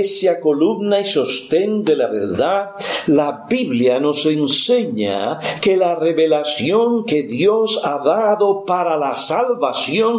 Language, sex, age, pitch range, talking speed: Spanish, male, 50-69, 155-225 Hz, 125 wpm